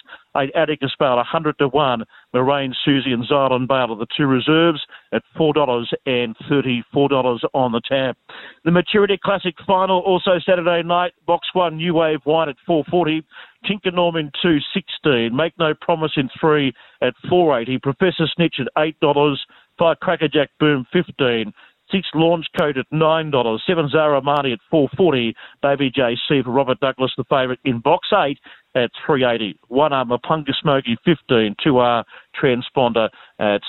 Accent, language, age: Australian, English, 50-69